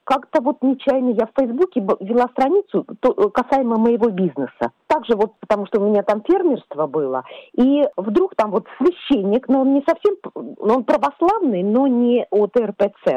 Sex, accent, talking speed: female, native, 165 wpm